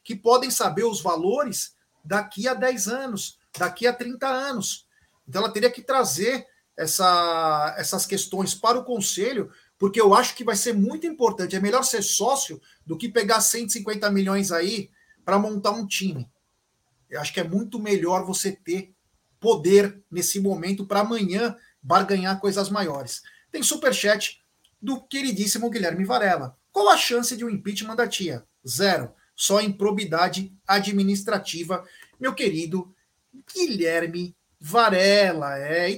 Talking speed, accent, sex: 140 wpm, Brazilian, male